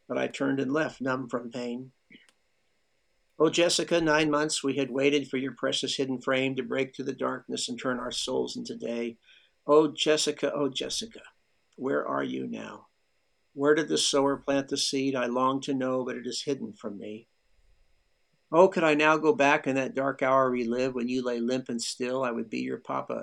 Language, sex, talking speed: English, male, 205 wpm